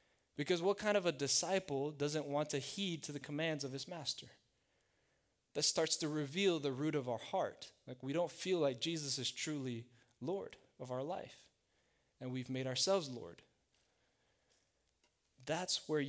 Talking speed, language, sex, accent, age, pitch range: 165 wpm, English, male, American, 20-39, 125-160 Hz